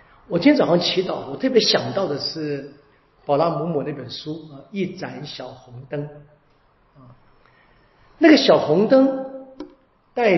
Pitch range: 135-210 Hz